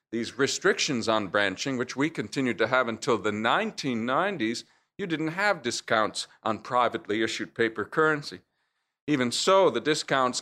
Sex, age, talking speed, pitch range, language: male, 50-69, 145 wpm, 120-145 Hz, English